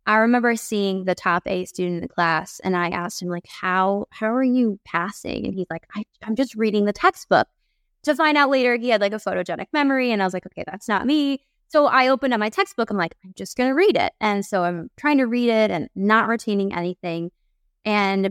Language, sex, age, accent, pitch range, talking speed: English, female, 20-39, American, 185-230 Hz, 235 wpm